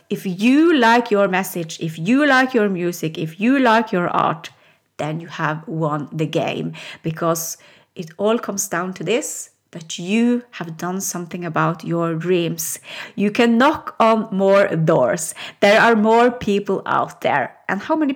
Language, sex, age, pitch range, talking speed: English, female, 30-49, 180-235 Hz, 170 wpm